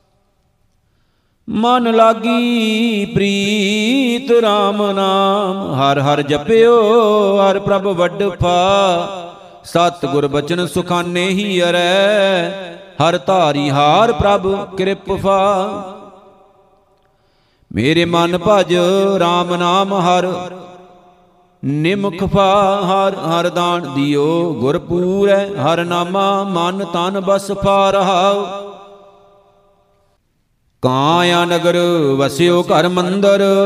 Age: 50-69